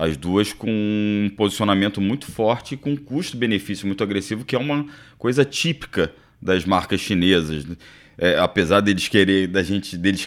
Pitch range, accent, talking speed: 90-120 Hz, Brazilian, 165 wpm